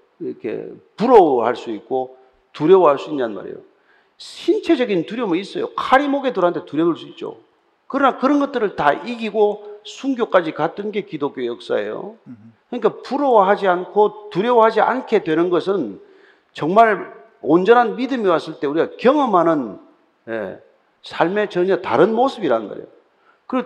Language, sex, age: Korean, male, 40-59